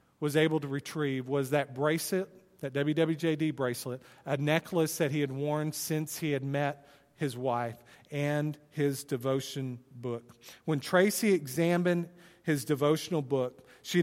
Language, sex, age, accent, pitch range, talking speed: English, male, 40-59, American, 135-170 Hz, 140 wpm